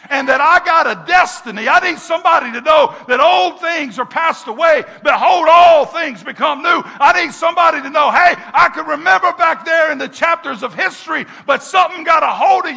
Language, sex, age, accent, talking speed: English, male, 50-69, American, 205 wpm